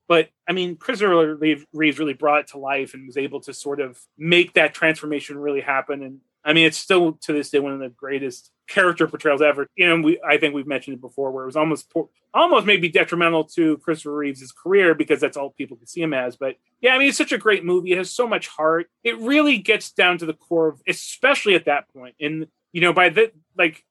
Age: 30-49